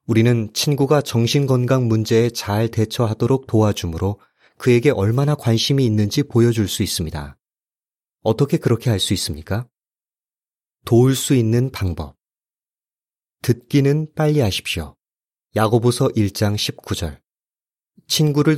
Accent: native